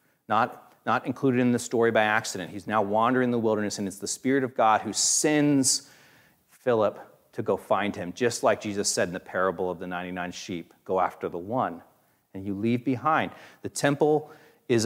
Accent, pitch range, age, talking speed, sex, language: American, 135-195 Hz, 40-59, 200 wpm, male, English